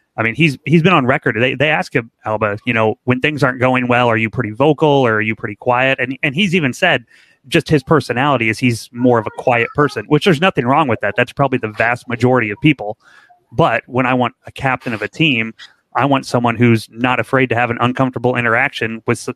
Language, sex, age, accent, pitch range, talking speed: English, male, 30-49, American, 115-135 Hz, 240 wpm